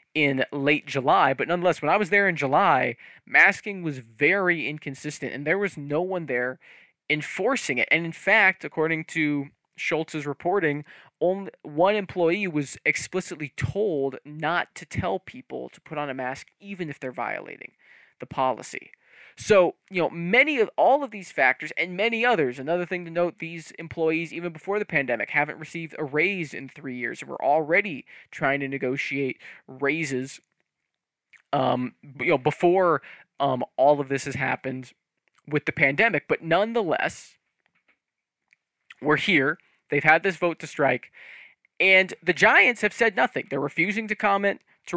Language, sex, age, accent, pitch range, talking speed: English, male, 20-39, American, 140-180 Hz, 160 wpm